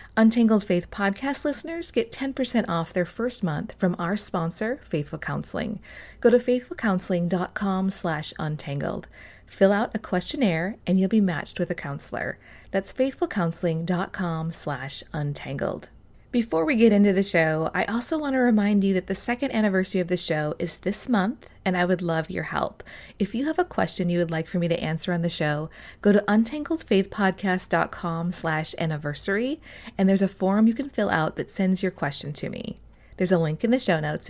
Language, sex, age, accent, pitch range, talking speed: English, female, 30-49, American, 165-215 Hz, 180 wpm